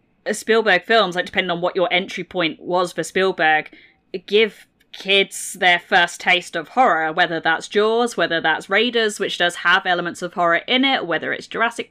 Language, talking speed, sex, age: English, 180 wpm, female, 20-39